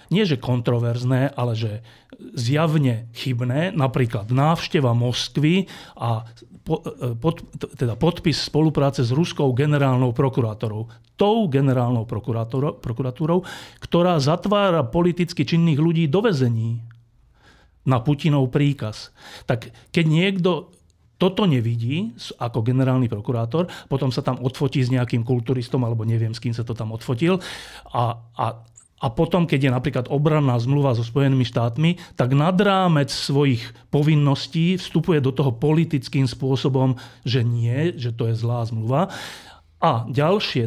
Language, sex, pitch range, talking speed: Slovak, male, 120-155 Hz, 130 wpm